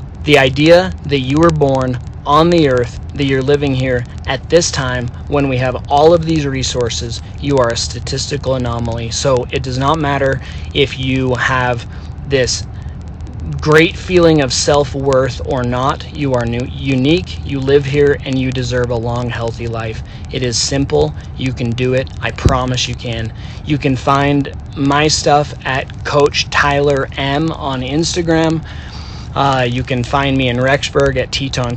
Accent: American